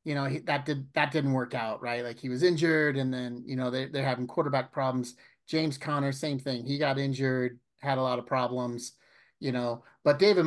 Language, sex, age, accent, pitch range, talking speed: English, male, 30-49, American, 130-165 Hz, 225 wpm